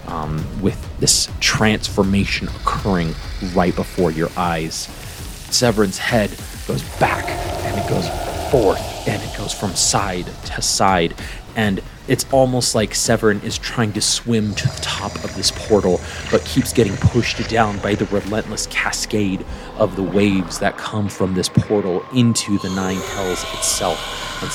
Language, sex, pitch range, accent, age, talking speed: English, male, 95-115 Hz, American, 30-49, 150 wpm